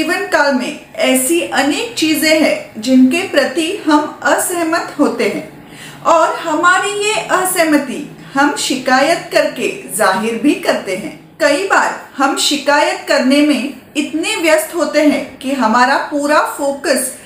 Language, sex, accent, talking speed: Marathi, female, native, 50 wpm